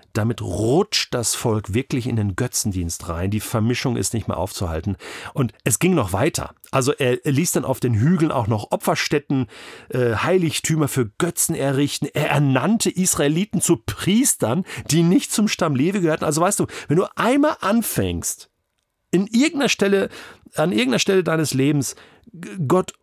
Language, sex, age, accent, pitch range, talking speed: German, male, 40-59, German, 115-170 Hz, 160 wpm